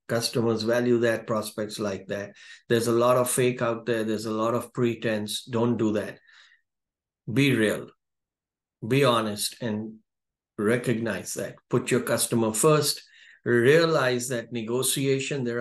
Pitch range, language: 110-125 Hz, English